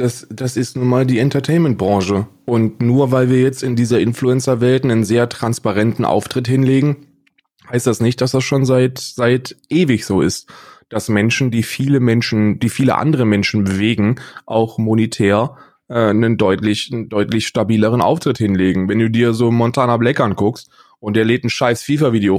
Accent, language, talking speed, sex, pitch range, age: German, German, 170 wpm, male, 110-135 Hz, 20-39